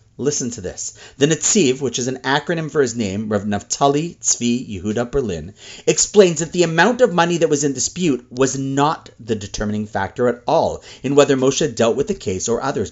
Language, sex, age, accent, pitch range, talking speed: English, male, 40-59, American, 120-185 Hz, 200 wpm